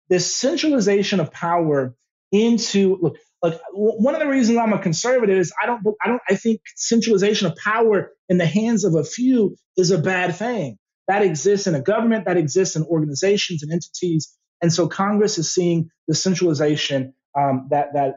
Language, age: English, 30-49